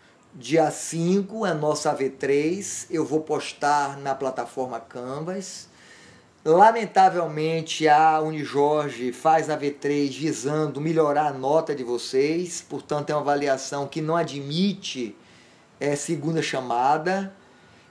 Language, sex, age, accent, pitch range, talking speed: Portuguese, male, 20-39, Brazilian, 145-190 Hz, 115 wpm